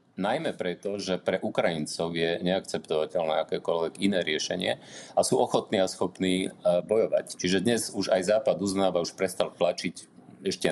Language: Slovak